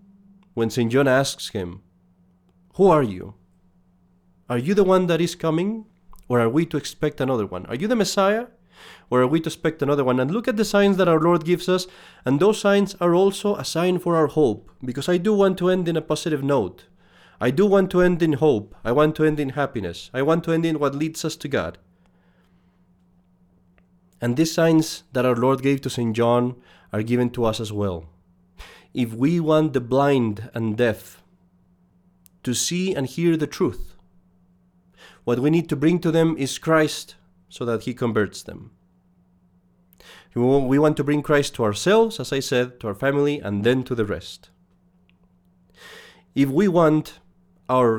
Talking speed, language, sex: 190 wpm, English, male